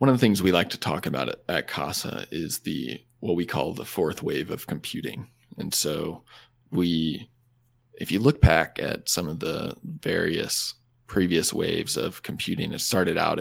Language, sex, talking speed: English, male, 180 wpm